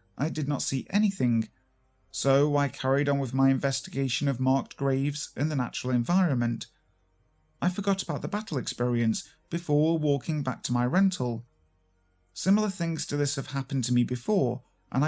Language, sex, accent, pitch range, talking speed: English, male, British, 120-150 Hz, 165 wpm